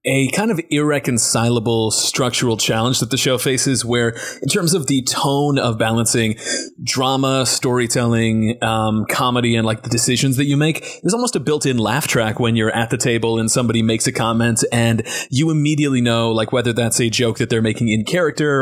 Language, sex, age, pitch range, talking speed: English, male, 30-49, 115-135 Hz, 190 wpm